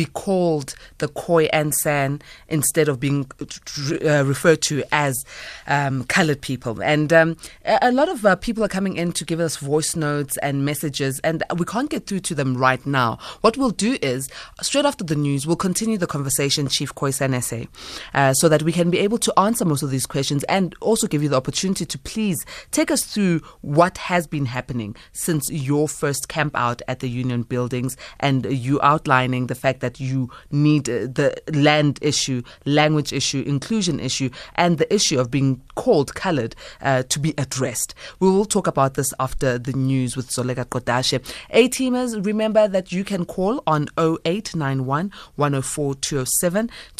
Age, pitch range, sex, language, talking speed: 20-39, 135-170 Hz, female, English, 180 wpm